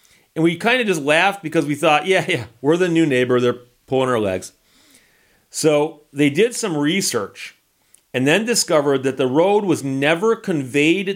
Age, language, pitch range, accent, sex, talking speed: 40-59, English, 125-170 Hz, American, male, 175 wpm